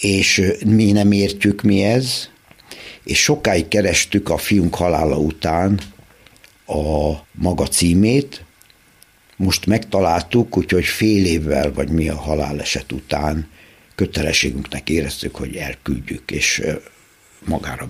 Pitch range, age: 80-105 Hz, 60-79